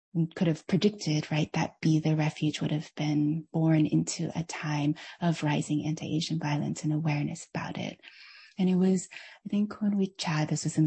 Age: 20-39